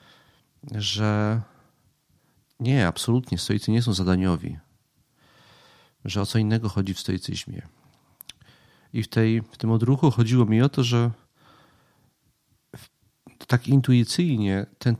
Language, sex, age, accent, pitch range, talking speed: Polish, male, 40-59, native, 100-120 Hz, 115 wpm